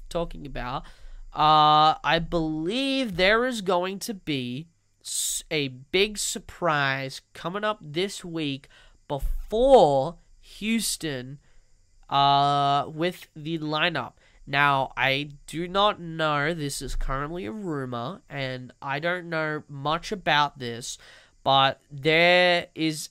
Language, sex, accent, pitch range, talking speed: English, male, American, 135-185 Hz, 110 wpm